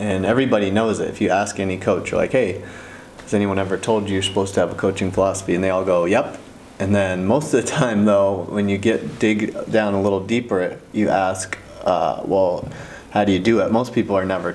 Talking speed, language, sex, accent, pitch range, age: 235 wpm, English, male, American, 95-110 Hz, 30-49